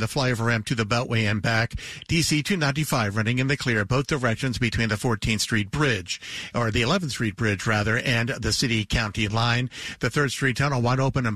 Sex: male